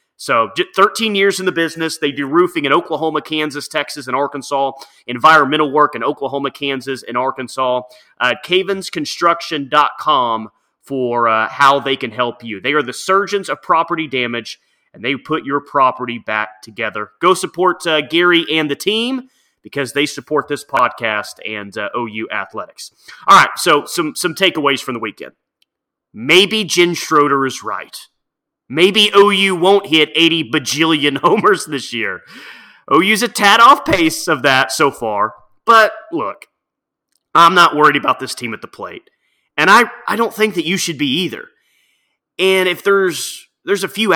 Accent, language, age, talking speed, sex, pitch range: American, English, 30-49, 165 wpm, male, 140-205 Hz